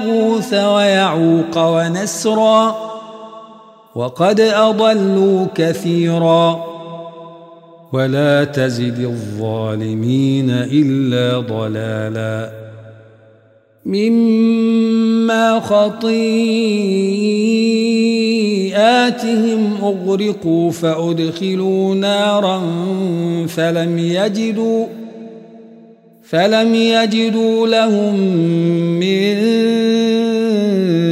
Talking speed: 40 wpm